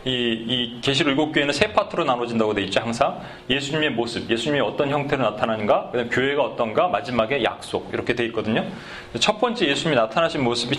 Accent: native